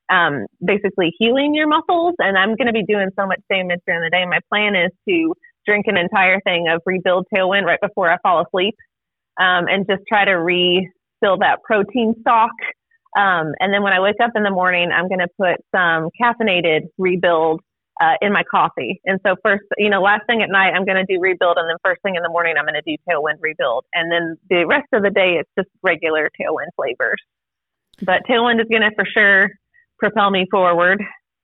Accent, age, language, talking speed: American, 30-49, English, 215 wpm